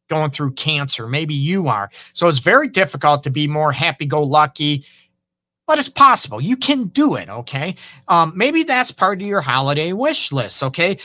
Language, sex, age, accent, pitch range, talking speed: English, male, 50-69, American, 145-205 Hz, 185 wpm